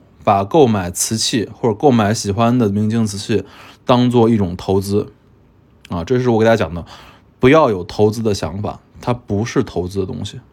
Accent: native